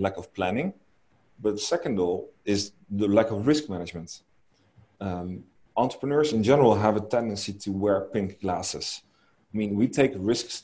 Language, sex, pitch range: English, male, 95-110 Hz